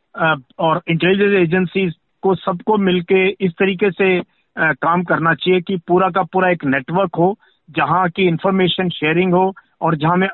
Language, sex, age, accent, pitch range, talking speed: Hindi, male, 50-69, native, 160-190 Hz, 165 wpm